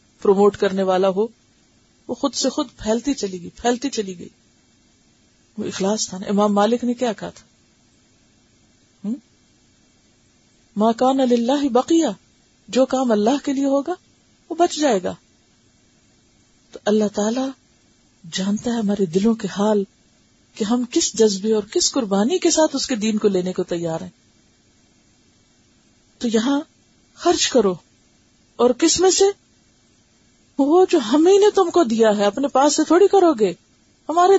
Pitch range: 190-260 Hz